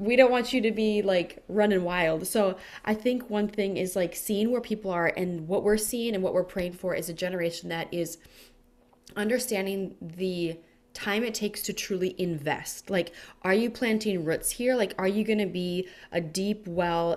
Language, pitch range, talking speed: English, 175-215 Hz, 195 wpm